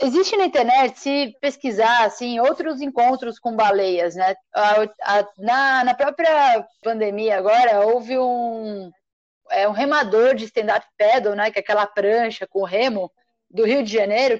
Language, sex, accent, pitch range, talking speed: Portuguese, female, Brazilian, 225-285 Hz, 160 wpm